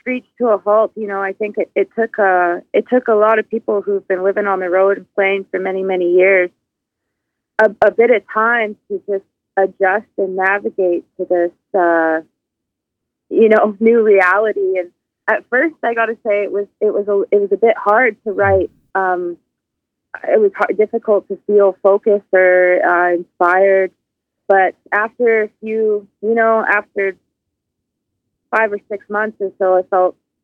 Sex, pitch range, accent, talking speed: female, 185-215 Hz, American, 180 wpm